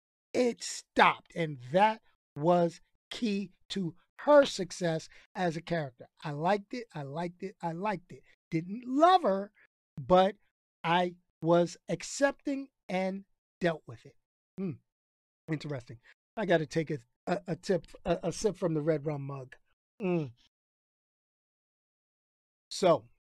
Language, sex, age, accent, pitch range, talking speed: English, male, 50-69, American, 150-190 Hz, 125 wpm